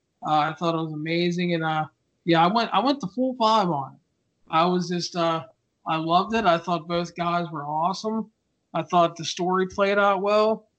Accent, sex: American, male